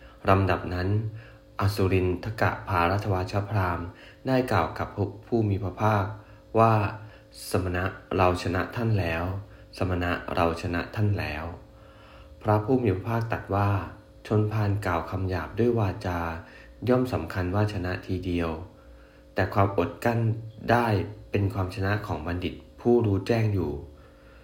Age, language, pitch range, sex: 20-39, English, 85-105 Hz, male